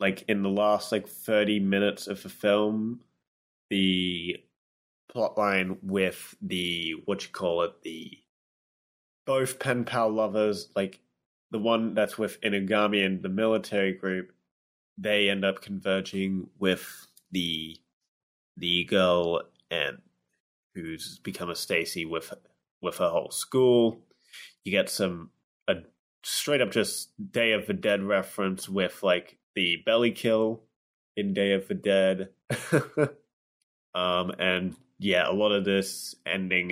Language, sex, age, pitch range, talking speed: English, male, 20-39, 85-105 Hz, 130 wpm